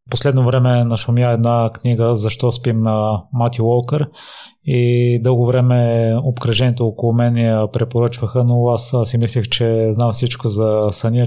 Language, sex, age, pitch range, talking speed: Bulgarian, male, 20-39, 110-125 Hz, 145 wpm